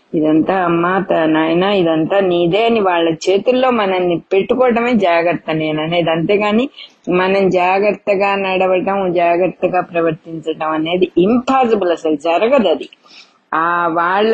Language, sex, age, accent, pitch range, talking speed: English, female, 20-39, Indian, 170-220 Hz, 115 wpm